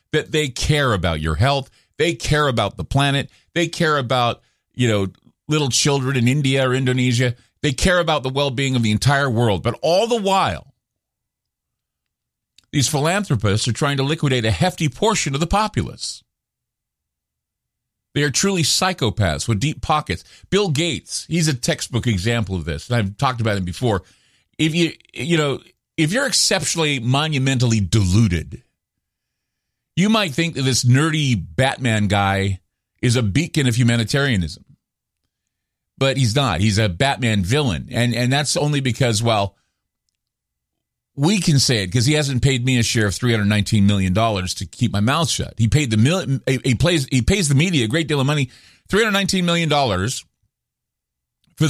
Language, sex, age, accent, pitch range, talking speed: English, male, 50-69, American, 115-150 Hz, 170 wpm